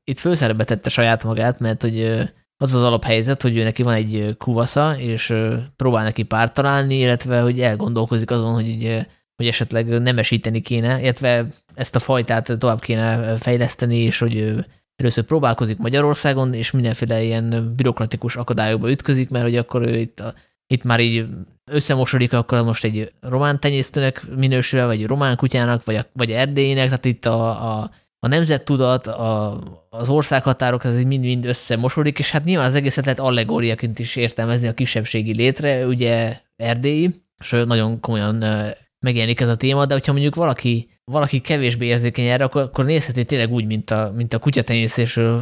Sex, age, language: male, 20-39, Hungarian